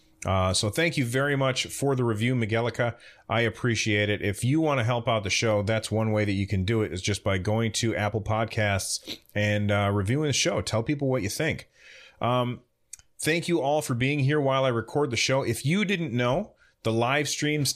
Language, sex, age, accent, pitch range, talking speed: English, male, 30-49, American, 105-125 Hz, 220 wpm